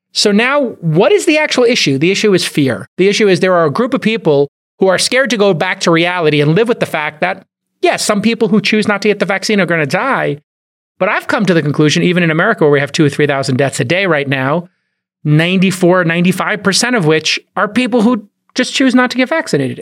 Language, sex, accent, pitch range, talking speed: English, male, American, 155-215 Hz, 240 wpm